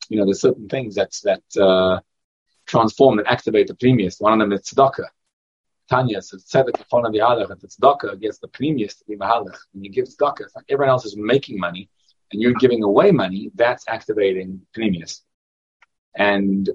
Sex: male